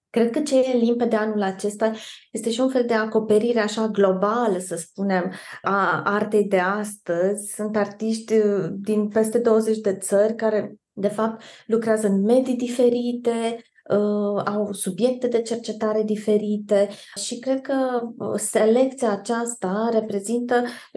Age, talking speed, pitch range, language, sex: 20-39, 135 wpm, 205-240 Hz, Romanian, female